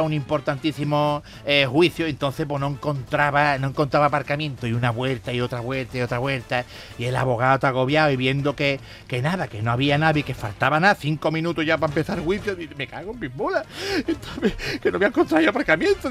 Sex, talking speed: male, 215 wpm